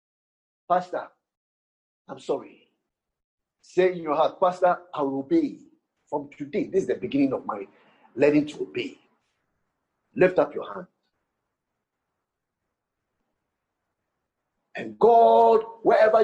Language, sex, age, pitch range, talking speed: English, male, 50-69, 220-310 Hz, 105 wpm